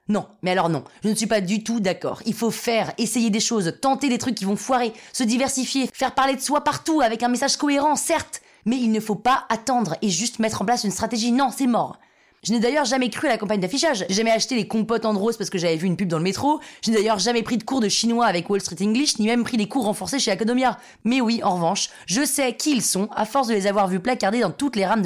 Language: French